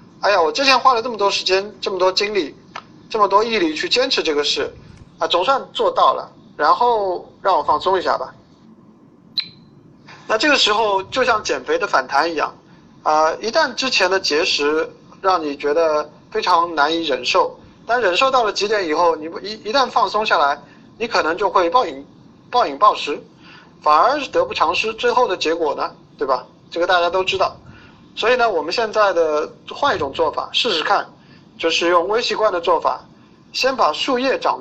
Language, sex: Chinese, male